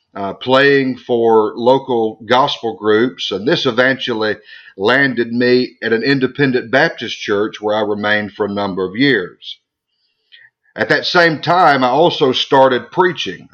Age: 40-59